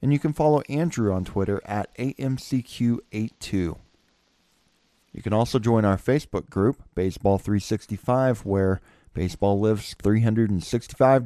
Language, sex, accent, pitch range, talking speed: English, male, American, 100-125 Hz, 110 wpm